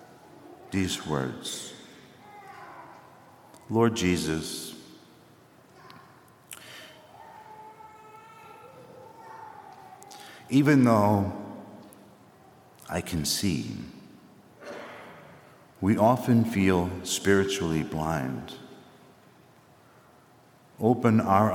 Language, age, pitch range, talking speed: English, 60-79, 90-120 Hz, 45 wpm